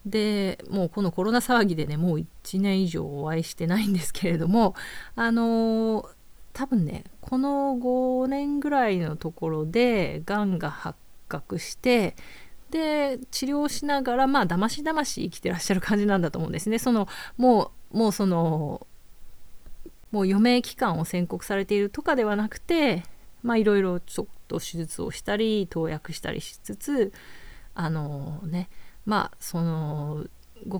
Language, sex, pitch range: Japanese, female, 170-235 Hz